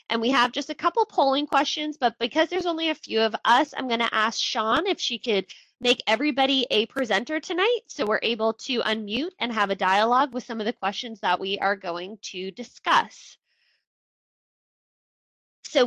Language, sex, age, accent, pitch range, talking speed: English, female, 20-39, American, 210-280 Hz, 190 wpm